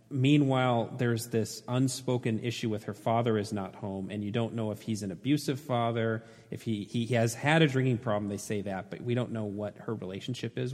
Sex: male